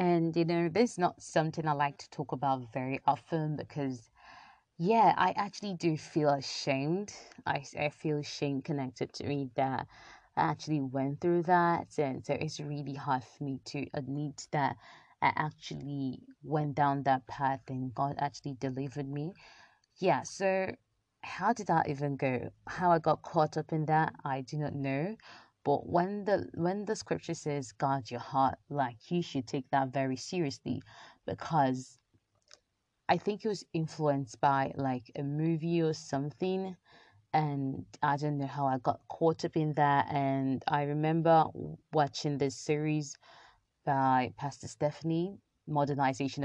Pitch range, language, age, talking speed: 135-165 Hz, English, 20-39, 160 wpm